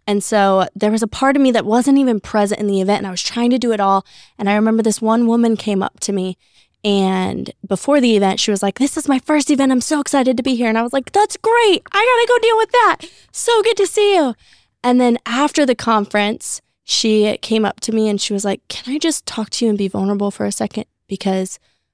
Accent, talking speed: American, 265 wpm